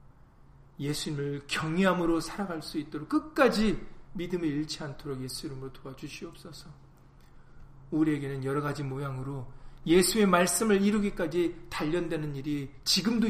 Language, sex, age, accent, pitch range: Korean, male, 40-59, native, 130-200 Hz